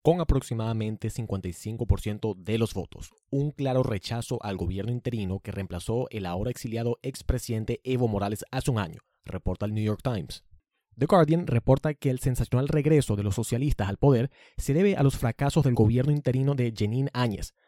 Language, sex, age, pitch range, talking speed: Spanish, male, 30-49, 110-145 Hz, 175 wpm